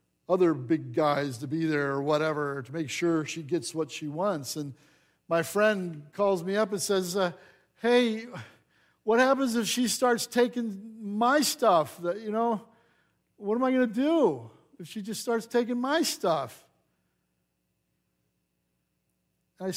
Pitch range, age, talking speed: 130-220 Hz, 50-69, 150 wpm